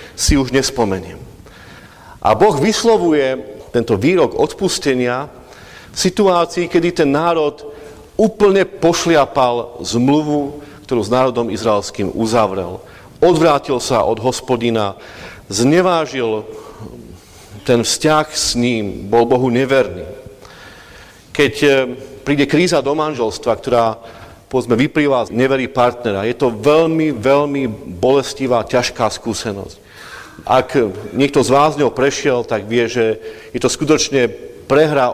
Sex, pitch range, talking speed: male, 115-150 Hz, 110 wpm